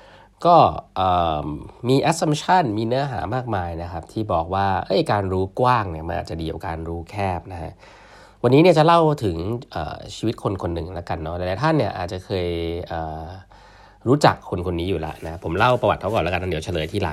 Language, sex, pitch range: Thai, male, 85-115 Hz